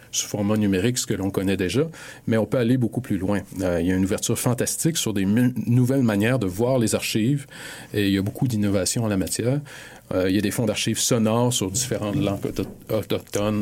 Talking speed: 230 wpm